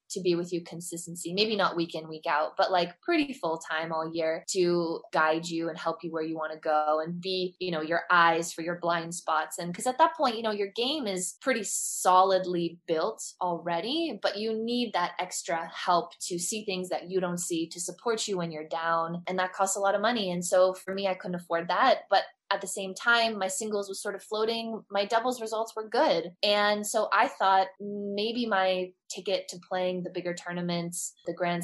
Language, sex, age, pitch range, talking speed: English, female, 20-39, 170-190 Hz, 220 wpm